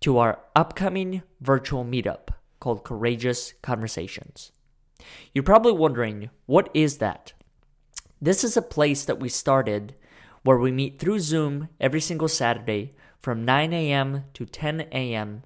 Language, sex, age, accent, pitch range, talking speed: English, male, 20-39, American, 120-150 Hz, 135 wpm